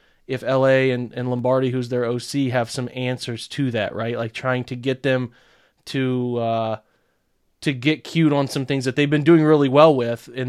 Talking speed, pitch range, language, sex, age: 200 wpm, 120-135 Hz, English, male, 30-49